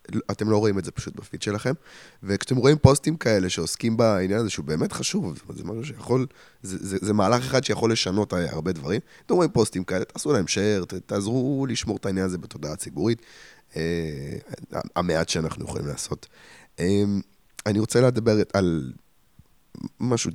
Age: 20-39